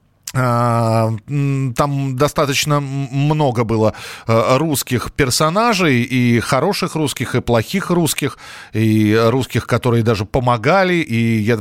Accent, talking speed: native, 100 wpm